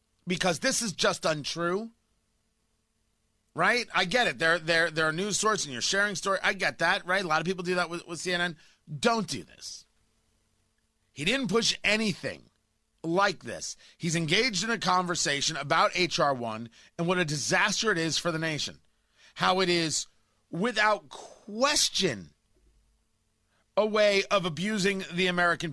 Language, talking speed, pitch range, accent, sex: English, 160 wpm, 130-195 Hz, American, male